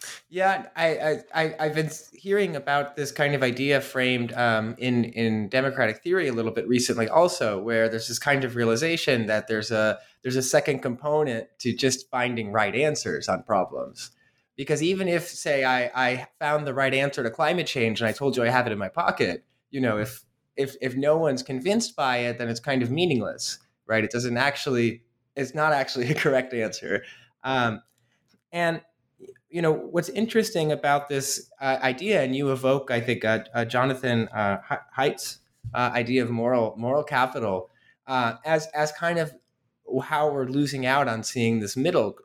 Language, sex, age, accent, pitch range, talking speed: English, male, 20-39, American, 115-145 Hz, 185 wpm